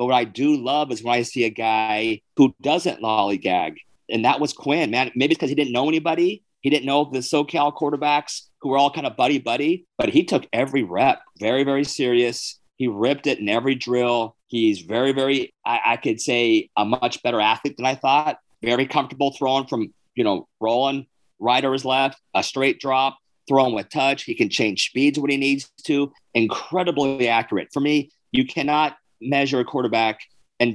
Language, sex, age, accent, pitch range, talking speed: English, male, 40-59, American, 120-145 Hz, 195 wpm